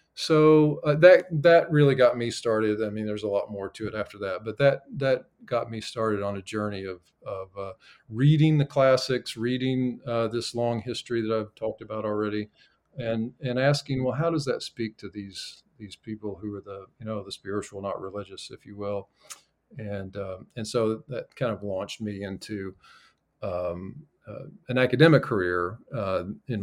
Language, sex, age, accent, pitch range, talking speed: English, male, 40-59, American, 100-135 Hz, 190 wpm